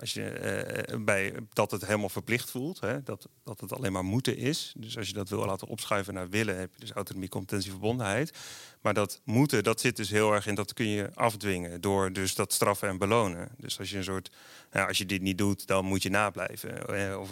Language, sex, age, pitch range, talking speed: Dutch, male, 30-49, 95-115 Hz, 235 wpm